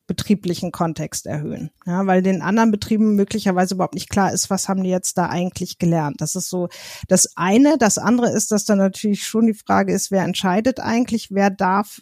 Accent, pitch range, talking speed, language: German, 185-215 Hz, 200 wpm, German